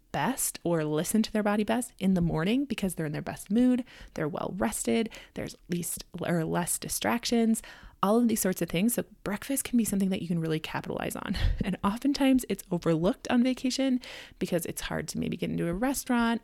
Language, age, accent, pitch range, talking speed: English, 20-39, American, 175-230 Hz, 205 wpm